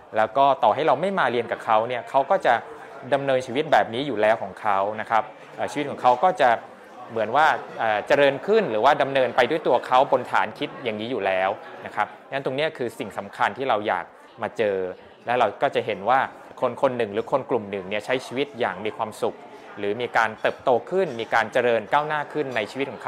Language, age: Thai, 20-39